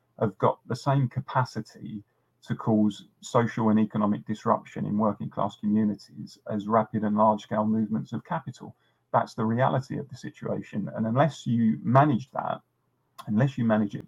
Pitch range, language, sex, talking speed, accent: 110-135 Hz, English, male, 155 wpm, British